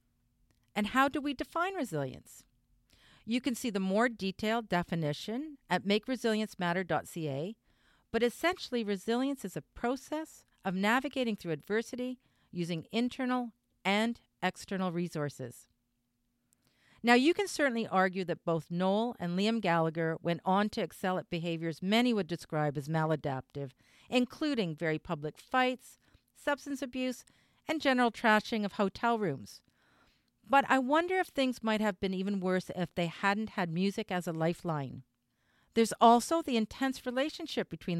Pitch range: 170-245 Hz